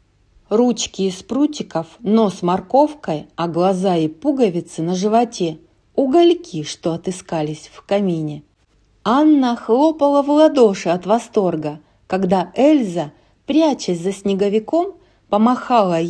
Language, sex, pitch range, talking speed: Russian, female, 175-245 Hz, 105 wpm